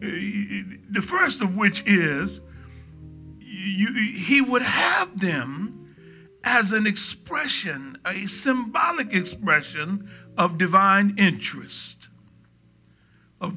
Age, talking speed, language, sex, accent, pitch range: 60-79, 85 wpm, English, male, American, 155-205 Hz